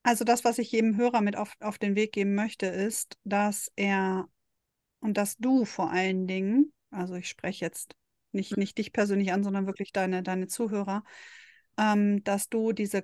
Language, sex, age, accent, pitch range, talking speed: German, female, 40-59, German, 195-225 Hz, 185 wpm